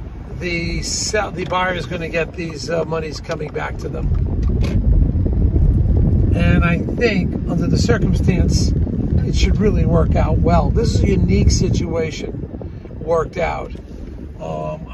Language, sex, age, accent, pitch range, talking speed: English, male, 50-69, American, 150-190 Hz, 140 wpm